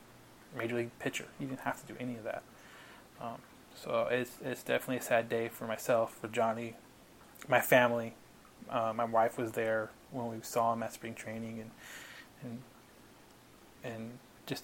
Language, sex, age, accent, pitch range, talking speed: English, male, 20-39, American, 115-125 Hz, 170 wpm